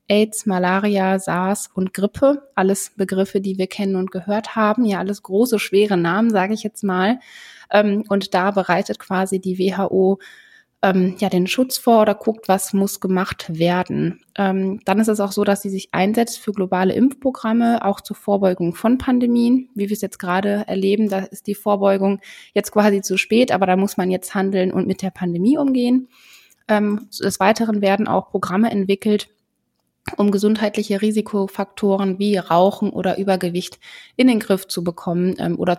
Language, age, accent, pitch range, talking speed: German, 20-39, German, 190-215 Hz, 170 wpm